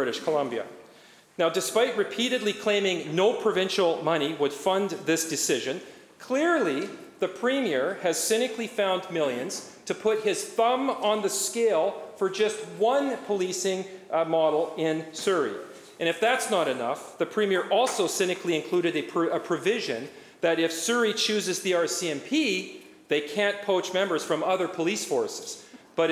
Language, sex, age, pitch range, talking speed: English, male, 40-59, 170-225 Hz, 145 wpm